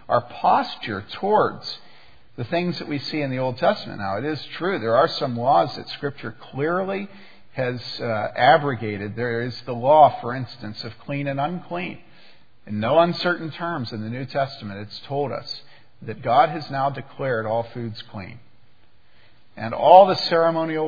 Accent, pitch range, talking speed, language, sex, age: American, 115-150 Hz, 170 wpm, English, male, 50-69